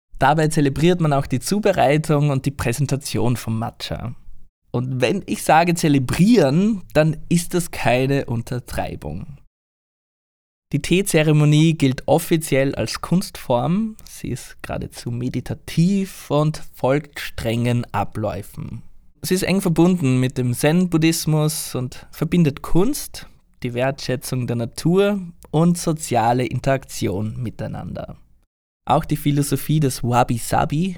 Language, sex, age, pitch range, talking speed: German, male, 20-39, 125-165 Hz, 110 wpm